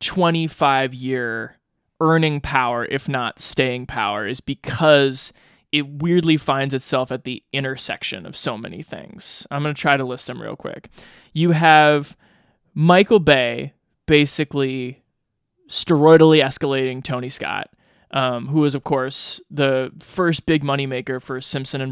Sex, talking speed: male, 140 wpm